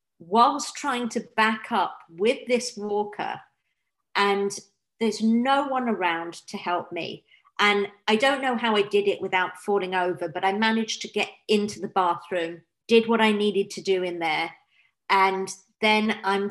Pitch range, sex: 195-235 Hz, female